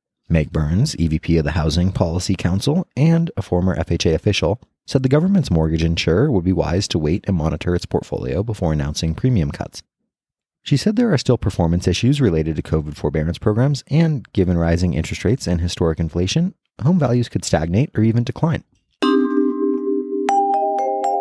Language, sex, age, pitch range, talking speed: English, male, 30-49, 80-125 Hz, 165 wpm